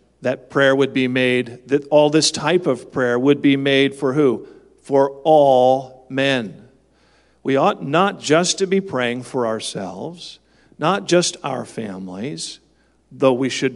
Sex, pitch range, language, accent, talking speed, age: male, 130-165 Hz, English, American, 155 wpm, 50-69